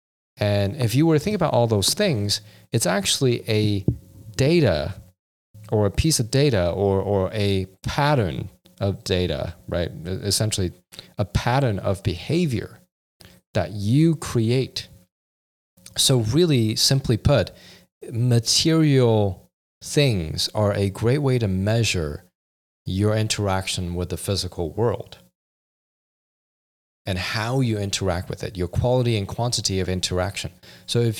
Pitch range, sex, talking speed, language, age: 95-125 Hz, male, 125 wpm, English, 30-49